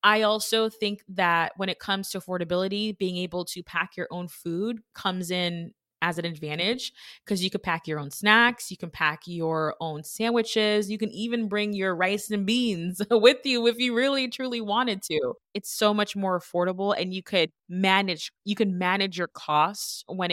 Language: English